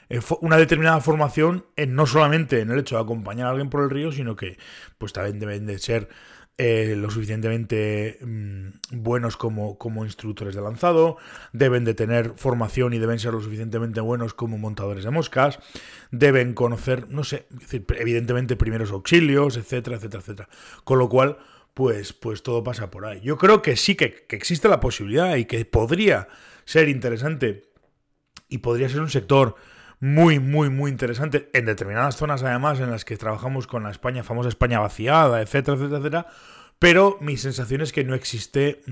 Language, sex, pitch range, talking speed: Spanish, male, 110-140 Hz, 175 wpm